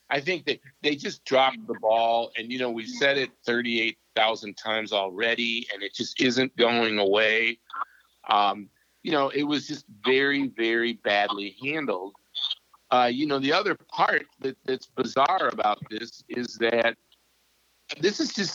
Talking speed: 155 wpm